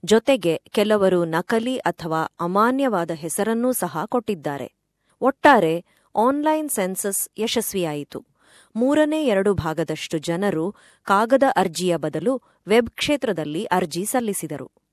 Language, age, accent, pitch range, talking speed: Kannada, 20-39, native, 165-235 Hz, 90 wpm